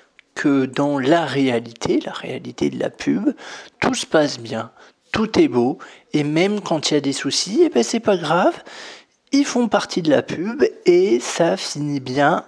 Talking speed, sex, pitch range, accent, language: 185 wpm, male, 125-185 Hz, French, French